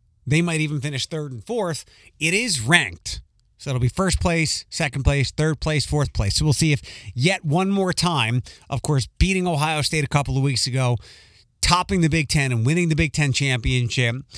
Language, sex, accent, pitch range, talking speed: English, male, American, 115-155 Hz, 205 wpm